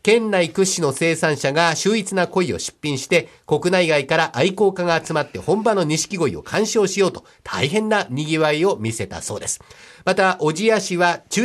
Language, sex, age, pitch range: Japanese, male, 50-69, 150-200 Hz